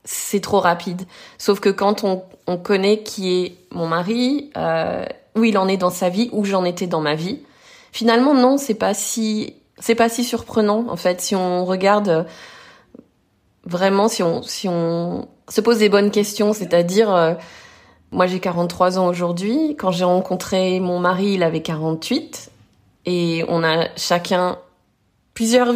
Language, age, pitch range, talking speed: French, 20-39, 180-220 Hz, 170 wpm